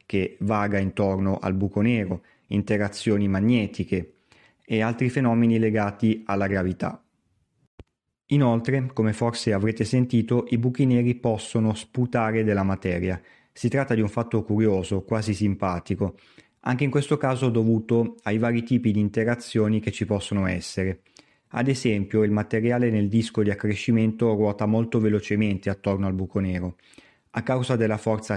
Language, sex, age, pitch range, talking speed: Italian, male, 30-49, 105-120 Hz, 140 wpm